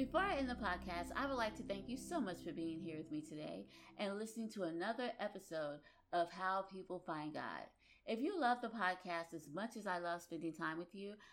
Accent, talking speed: American, 230 wpm